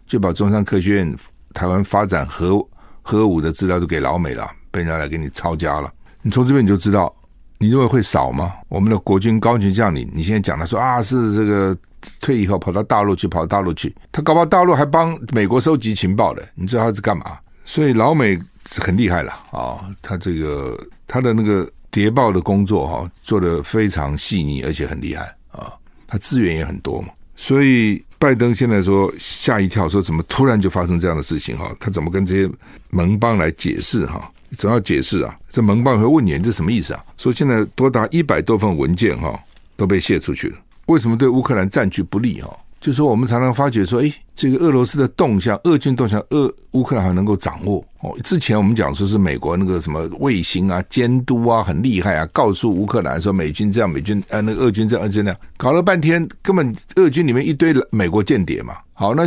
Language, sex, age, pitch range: Chinese, male, 50-69, 95-125 Hz